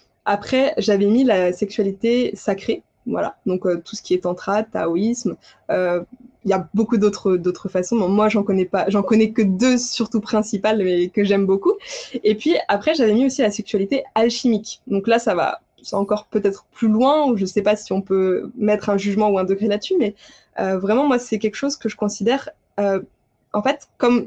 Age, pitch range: 20-39, 200-245 Hz